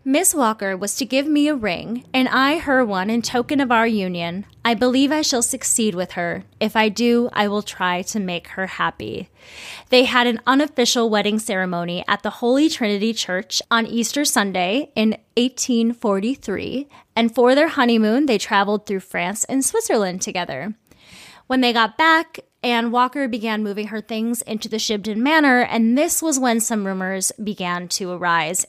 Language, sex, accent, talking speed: English, female, American, 175 wpm